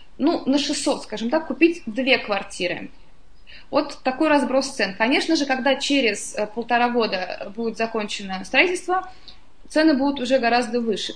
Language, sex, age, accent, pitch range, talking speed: Russian, female, 20-39, native, 230-280 Hz, 140 wpm